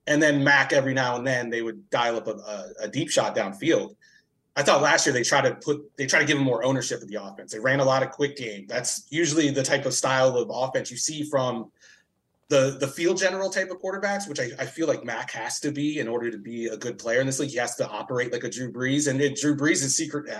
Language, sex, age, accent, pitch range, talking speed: English, male, 20-39, American, 120-155 Hz, 270 wpm